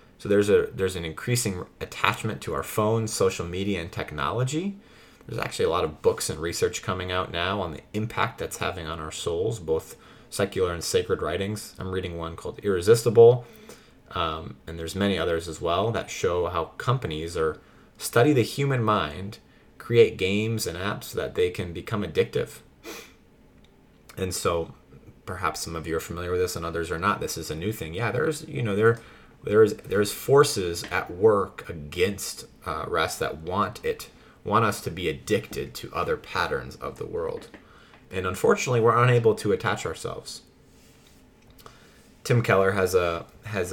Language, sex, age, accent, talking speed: English, male, 30-49, American, 175 wpm